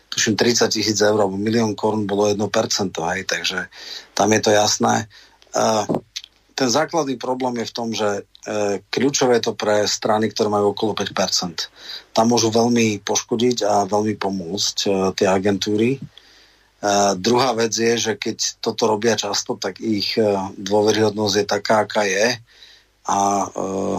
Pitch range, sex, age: 105-120 Hz, male, 40-59